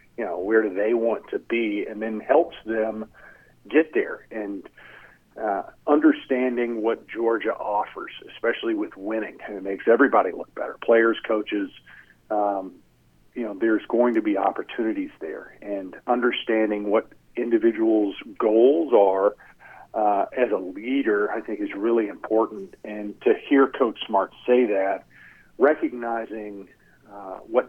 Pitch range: 105-130 Hz